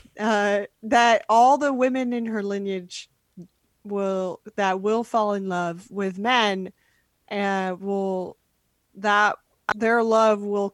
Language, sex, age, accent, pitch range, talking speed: English, female, 20-39, American, 195-230 Hz, 125 wpm